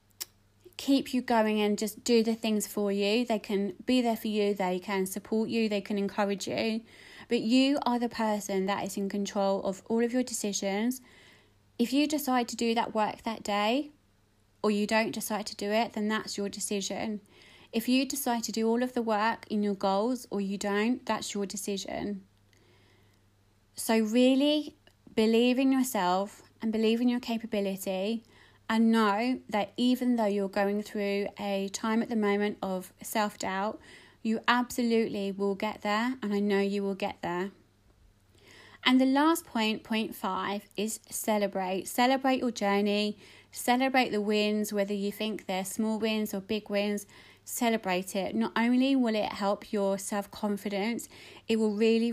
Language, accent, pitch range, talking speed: English, British, 200-230 Hz, 170 wpm